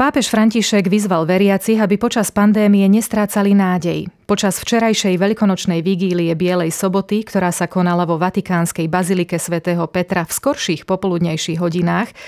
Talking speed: 130 wpm